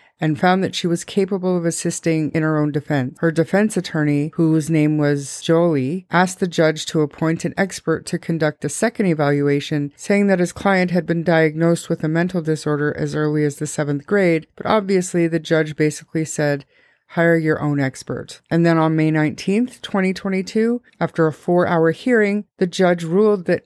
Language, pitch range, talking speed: English, 155-180 Hz, 185 wpm